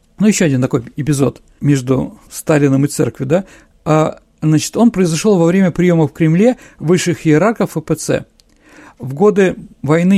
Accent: native